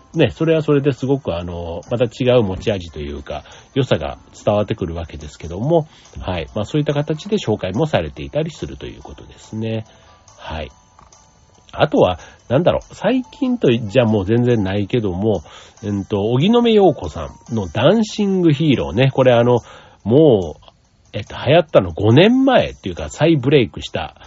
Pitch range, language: 100-145 Hz, Japanese